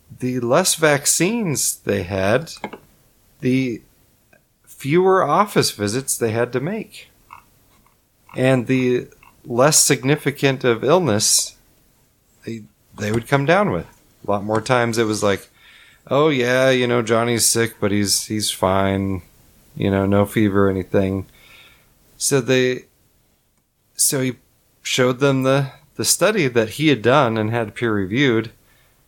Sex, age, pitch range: male, 30-49, 100-130 Hz